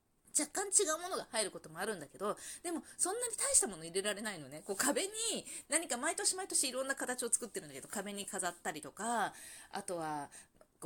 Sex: female